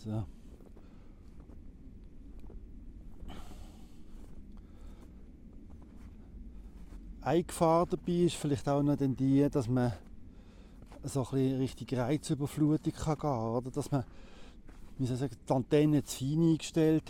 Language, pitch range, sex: German, 100-145 Hz, male